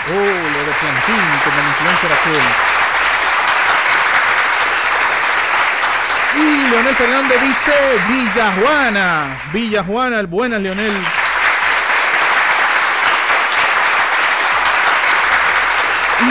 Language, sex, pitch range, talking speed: Spanish, male, 165-255 Hz, 75 wpm